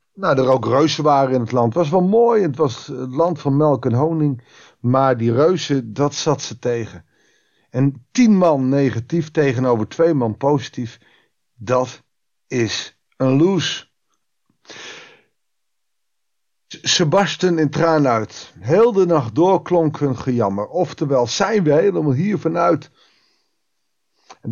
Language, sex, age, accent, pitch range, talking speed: Dutch, male, 50-69, Dutch, 125-170 Hz, 135 wpm